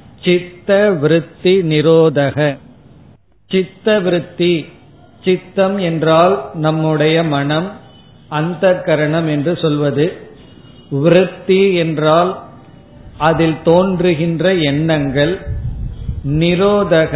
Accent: native